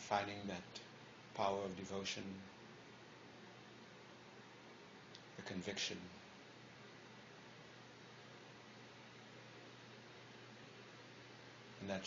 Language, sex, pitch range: English, male, 95-105 Hz